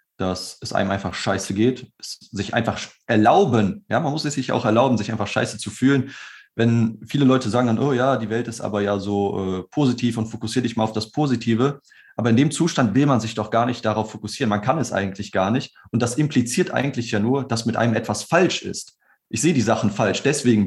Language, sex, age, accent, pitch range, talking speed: German, male, 30-49, German, 105-130 Hz, 230 wpm